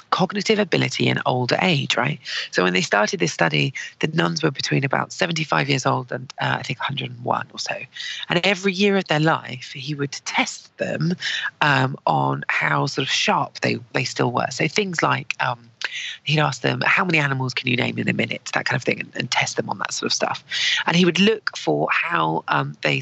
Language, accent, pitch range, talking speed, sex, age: English, British, 140-185 Hz, 220 wpm, female, 40-59